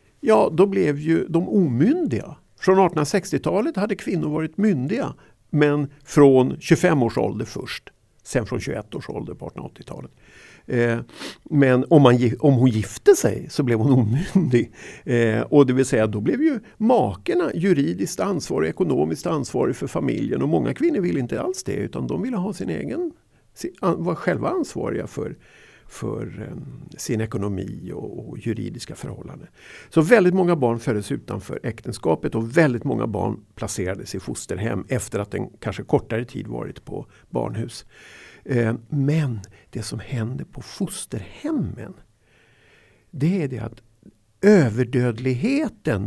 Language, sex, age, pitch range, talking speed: Swedish, male, 50-69, 115-175 Hz, 140 wpm